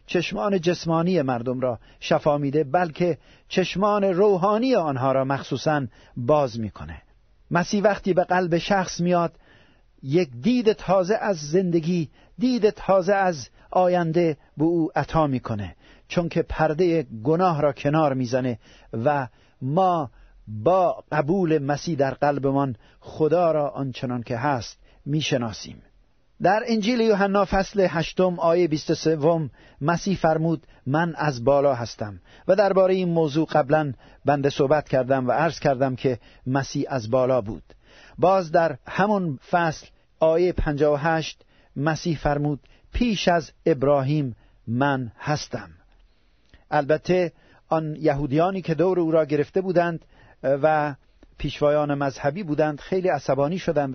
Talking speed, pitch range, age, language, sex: 125 wpm, 135-175 Hz, 50-69, Persian, male